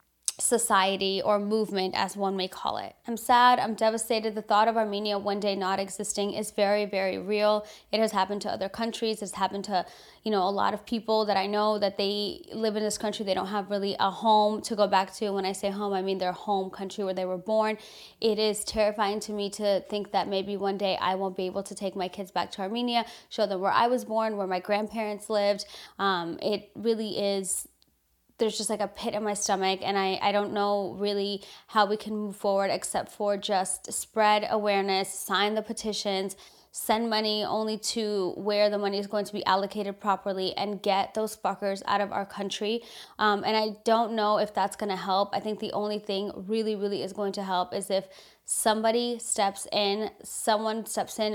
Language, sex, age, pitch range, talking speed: English, female, 20-39, 195-215 Hz, 215 wpm